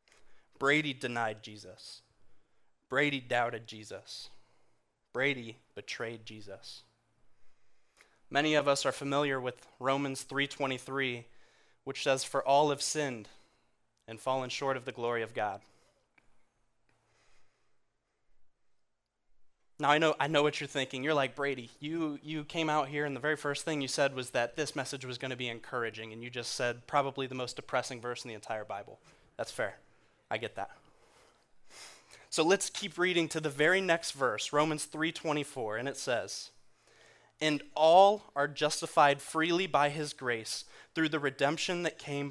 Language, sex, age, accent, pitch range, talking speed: English, male, 20-39, American, 120-150 Hz, 155 wpm